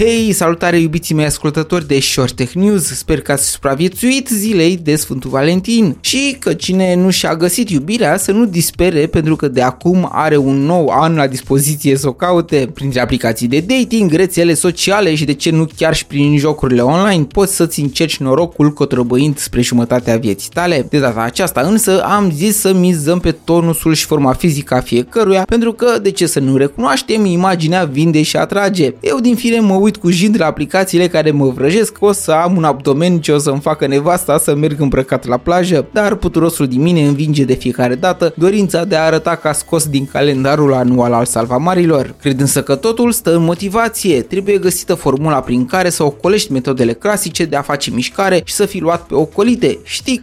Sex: male